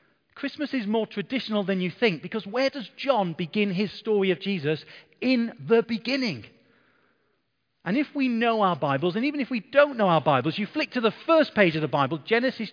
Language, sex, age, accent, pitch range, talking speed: English, male, 40-59, British, 160-225 Hz, 205 wpm